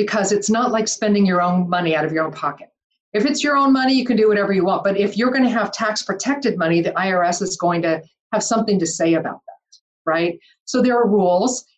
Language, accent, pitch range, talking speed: English, American, 175-220 Hz, 240 wpm